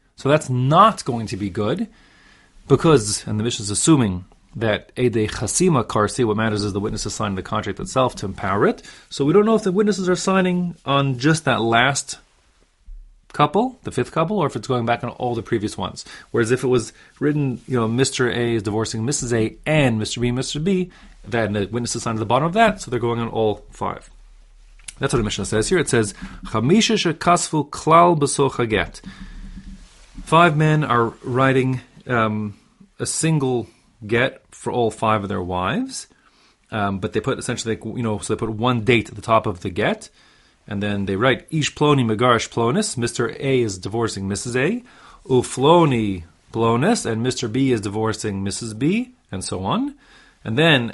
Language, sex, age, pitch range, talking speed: English, male, 30-49, 110-150 Hz, 190 wpm